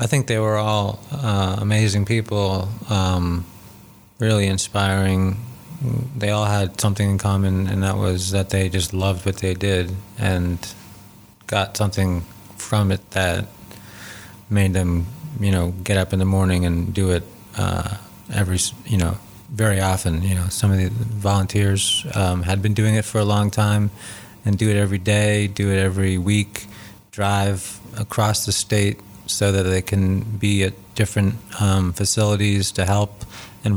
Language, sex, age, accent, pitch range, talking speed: English, male, 20-39, American, 95-105 Hz, 160 wpm